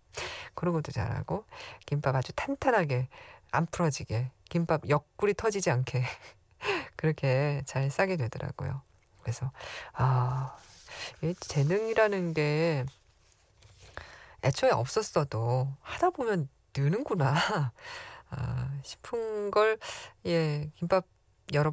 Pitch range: 130-175 Hz